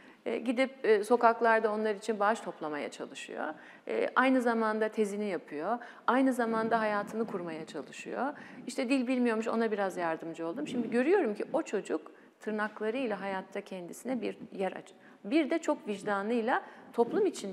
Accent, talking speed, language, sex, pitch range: native, 135 wpm, Turkish, female, 205-265 Hz